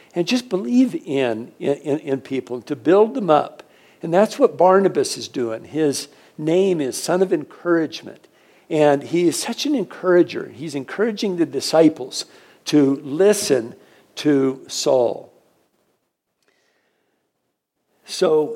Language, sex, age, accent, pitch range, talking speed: English, male, 60-79, American, 140-185 Hz, 125 wpm